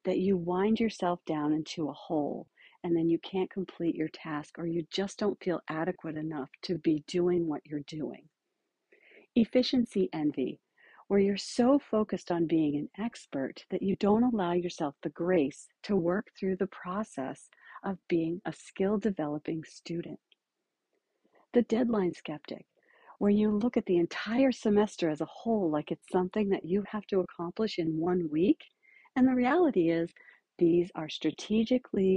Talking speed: 160 wpm